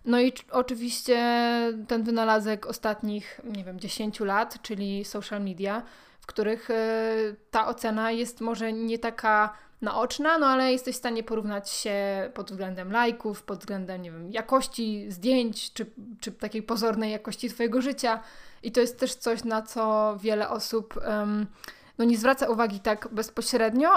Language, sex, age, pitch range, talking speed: Polish, female, 20-39, 210-240 Hz, 155 wpm